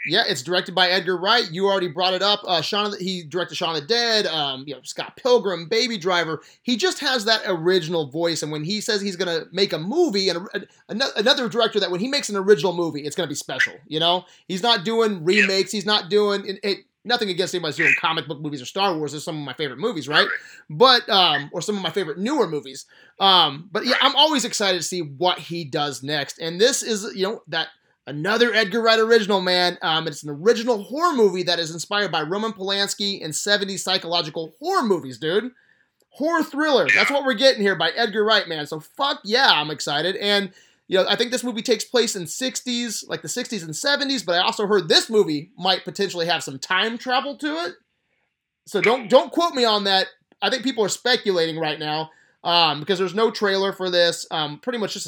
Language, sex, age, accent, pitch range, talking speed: English, male, 30-49, American, 170-225 Hz, 225 wpm